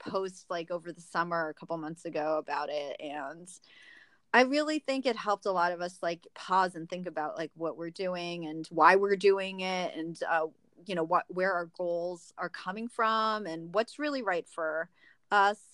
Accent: American